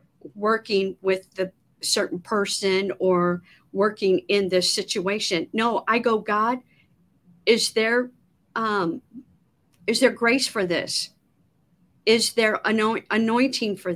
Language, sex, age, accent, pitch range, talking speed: English, female, 50-69, American, 195-245 Hz, 110 wpm